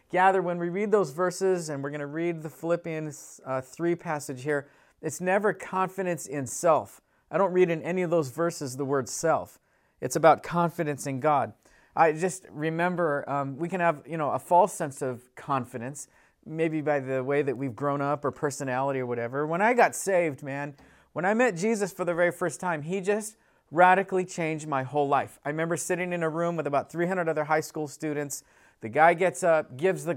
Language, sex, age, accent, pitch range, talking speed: English, male, 40-59, American, 150-195 Hz, 205 wpm